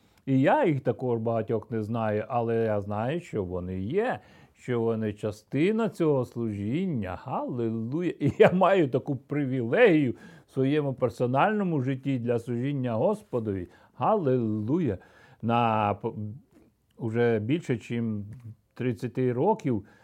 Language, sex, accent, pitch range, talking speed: Ukrainian, male, native, 115-145 Hz, 115 wpm